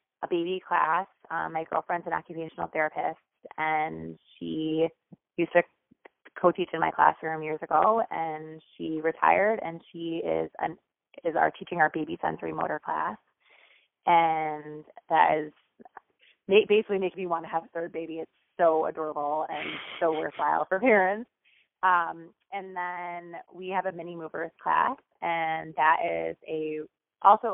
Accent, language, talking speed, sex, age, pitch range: American, English, 150 wpm, female, 20-39, 155-175 Hz